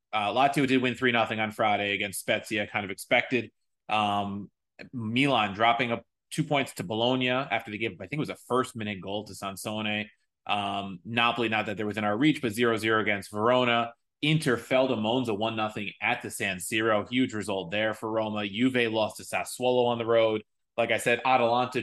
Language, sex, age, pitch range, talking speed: English, male, 20-39, 105-130 Hz, 190 wpm